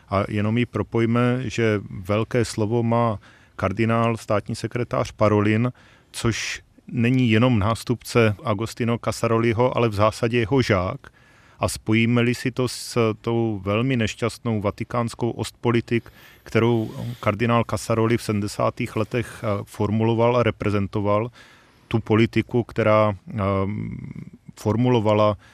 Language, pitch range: Czech, 105-120 Hz